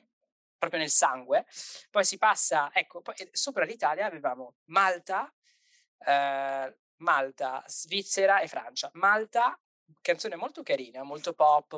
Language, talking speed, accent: Italian, 115 wpm, native